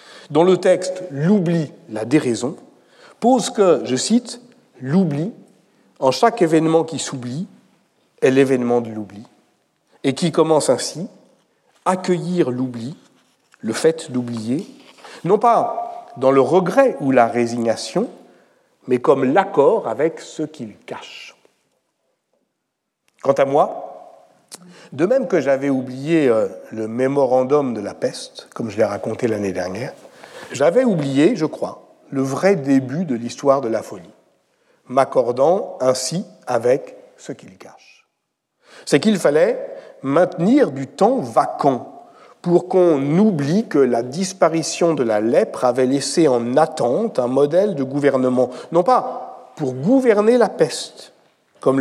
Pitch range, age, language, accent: 130-215 Hz, 60-79, French, French